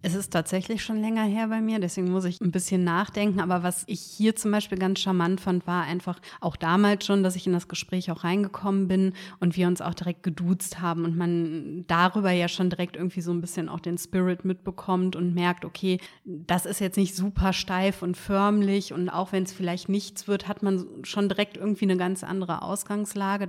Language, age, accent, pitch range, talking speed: German, 30-49, German, 180-200 Hz, 215 wpm